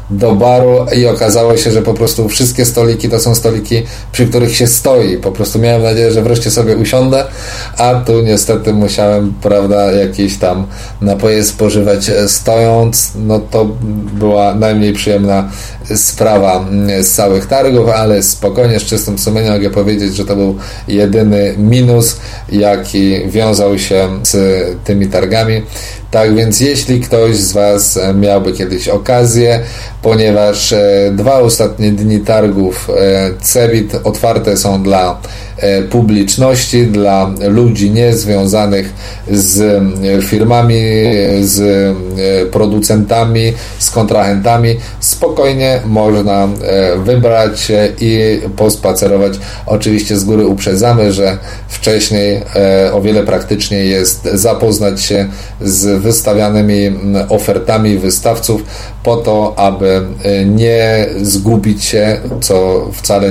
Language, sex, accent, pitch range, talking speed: Polish, male, native, 100-115 Hz, 115 wpm